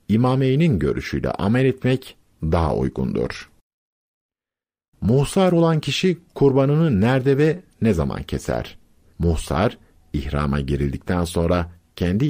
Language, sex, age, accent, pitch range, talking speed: Turkish, male, 50-69, native, 80-135 Hz, 100 wpm